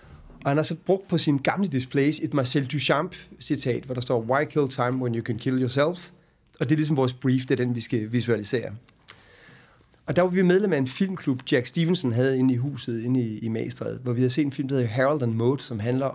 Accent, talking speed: native, 240 wpm